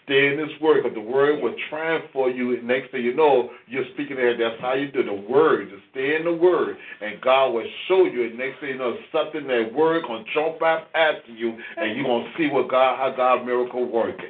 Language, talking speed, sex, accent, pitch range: English, 245 wpm, male, American, 120-145 Hz